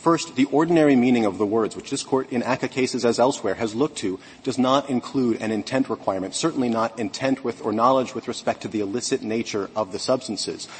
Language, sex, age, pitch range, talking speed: English, male, 40-59, 110-135 Hz, 215 wpm